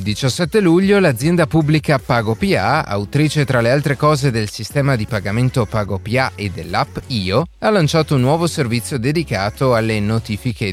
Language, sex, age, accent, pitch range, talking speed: Italian, male, 30-49, native, 105-150 Hz, 150 wpm